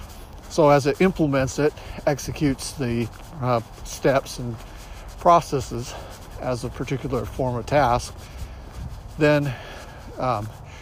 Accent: American